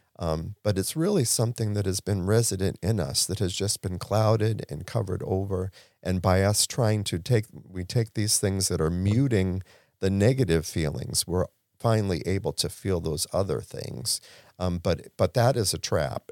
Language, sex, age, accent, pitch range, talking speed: English, male, 50-69, American, 100-135 Hz, 185 wpm